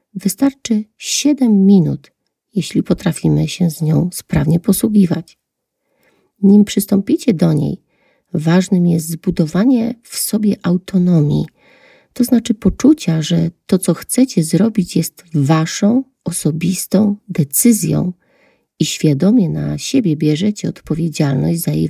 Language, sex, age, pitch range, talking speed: Polish, female, 40-59, 160-215 Hz, 110 wpm